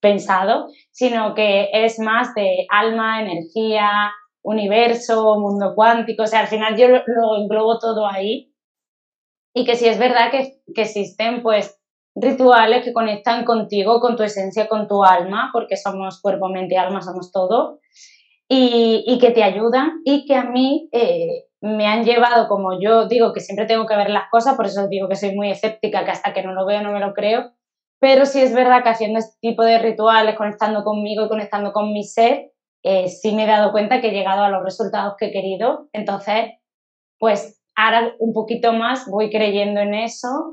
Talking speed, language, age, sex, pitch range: 190 wpm, Spanish, 20-39, female, 200-230 Hz